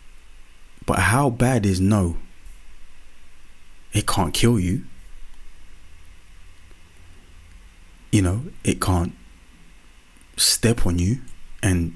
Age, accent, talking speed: 20-39, British, 85 wpm